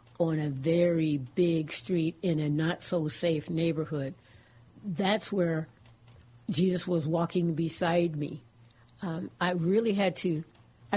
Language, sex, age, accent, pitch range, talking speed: English, female, 60-79, American, 150-180 Hz, 115 wpm